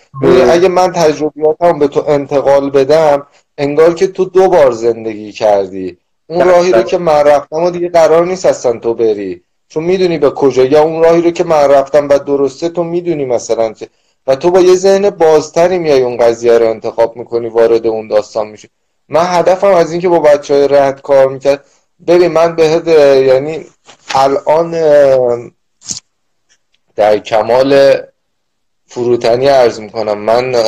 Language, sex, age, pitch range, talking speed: Persian, male, 30-49, 125-170 Hz, 160 wpm